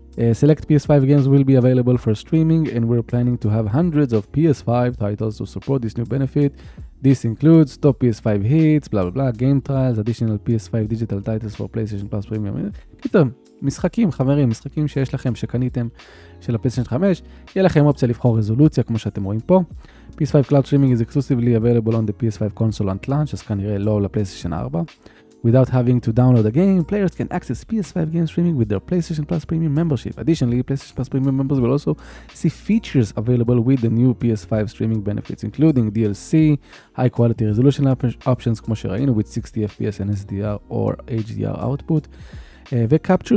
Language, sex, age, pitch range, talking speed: Hebrew, male, 20-39, 110-140 Hz, 170 wpm